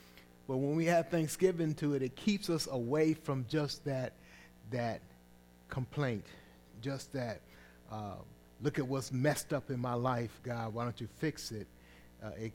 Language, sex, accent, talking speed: English, male, American, 165 wpm